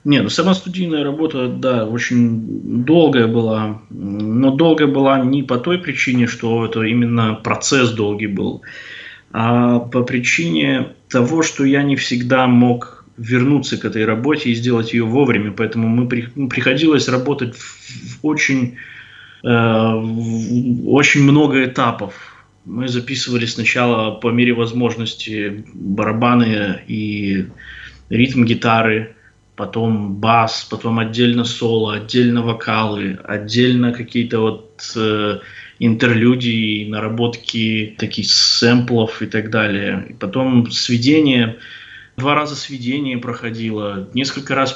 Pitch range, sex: 110-125 Hz, male